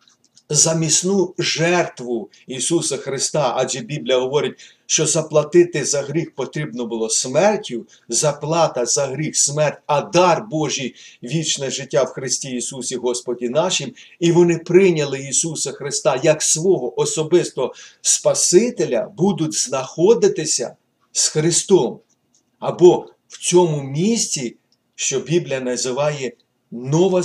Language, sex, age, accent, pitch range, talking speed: Ukrainian, male, 50-69, native, 125-170 Hz, 110 wpm